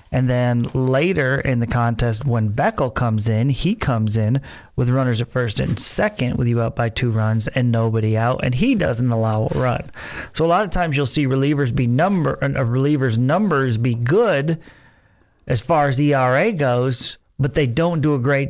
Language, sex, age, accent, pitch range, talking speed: English, male, 40-59, American, 115-135 Hz, 195 wpm